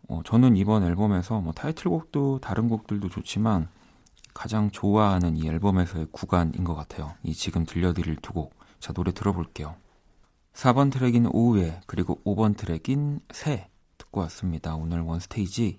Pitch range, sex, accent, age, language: 85-115 Hz, male, native, 40-59, Korean